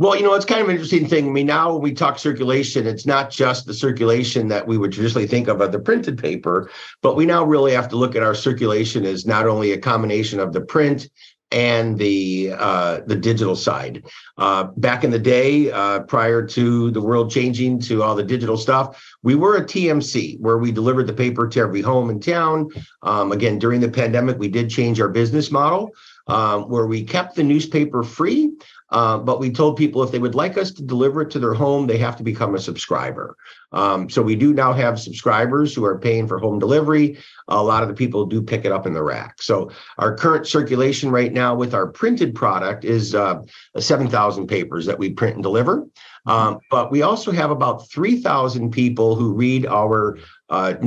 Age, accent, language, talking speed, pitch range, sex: 50-69, American, English, 215 wpm, 110-145 Hz, male